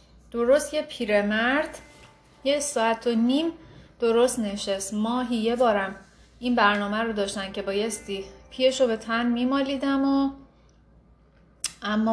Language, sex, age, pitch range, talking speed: Persian, female, 30-49, 195-245 Hz, 125 wpm